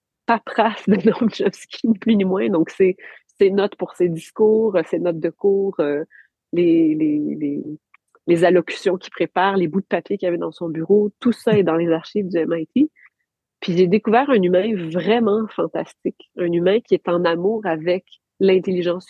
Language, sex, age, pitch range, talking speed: French, female, 30-49, 180-220 Hz, 185 wpm